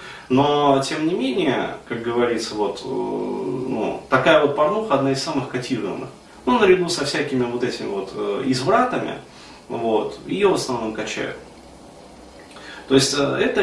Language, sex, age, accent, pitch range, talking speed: Russian, male, 30-49, native, 110-140 Hz, 135 wpm